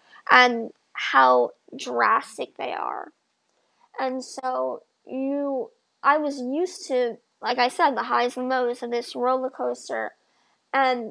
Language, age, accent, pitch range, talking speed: English, 20-39, American, 235-270 Hz, 130 wpm